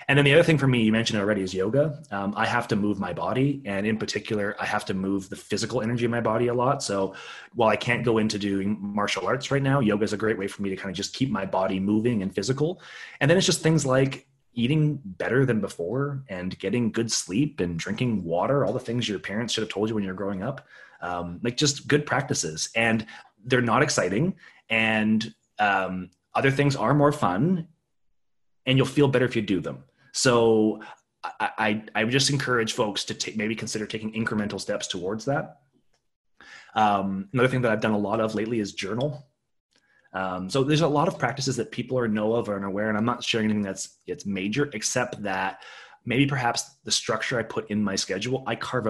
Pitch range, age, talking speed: 100-130 Hz, 30-49, 220 wpm